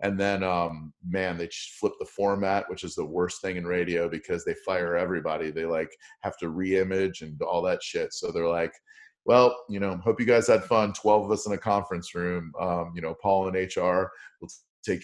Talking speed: 220 wpm